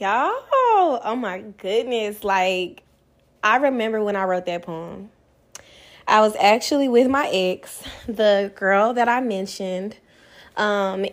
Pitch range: 175-215 Hz